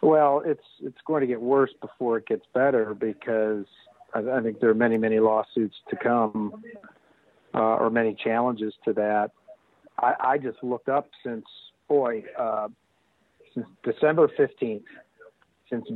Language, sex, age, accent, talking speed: English, male, 50-69, American, 150 wpm